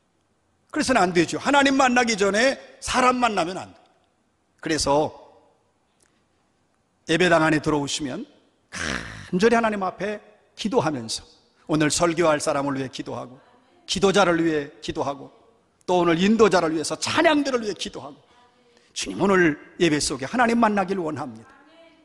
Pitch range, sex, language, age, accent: 170-260 Hz, male, Korean, 40-59, native